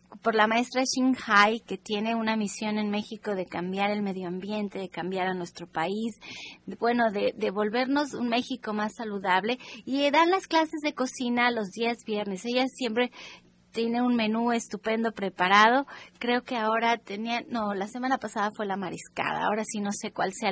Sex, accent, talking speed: female, Mexican, 185 wpm